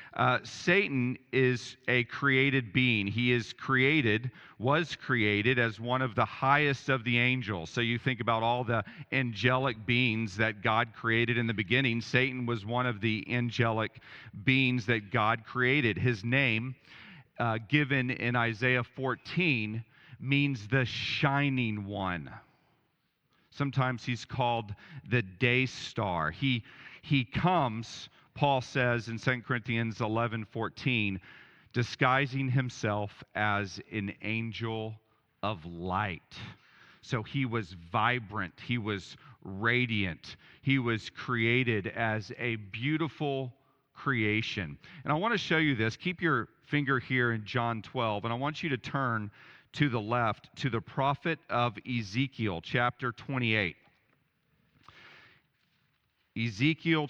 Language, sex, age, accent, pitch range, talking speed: English, male, 40-59, American, 110-135 Hz, 125 wpm